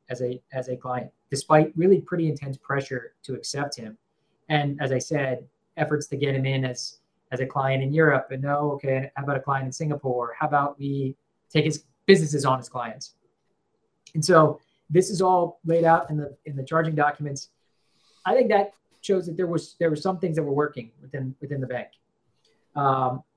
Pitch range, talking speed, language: 130-155 Hz, 200 wpm, English